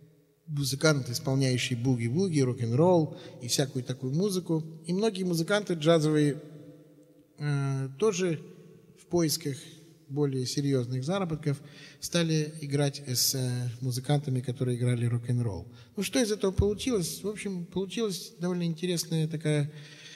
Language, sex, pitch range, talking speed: Russian, male, 130-165 Hz, 110 wpm